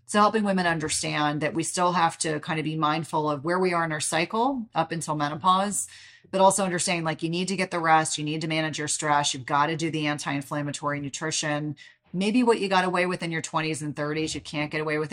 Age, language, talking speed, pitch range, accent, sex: 30-49, English, 245 wpm, 150-170 Hz, American, female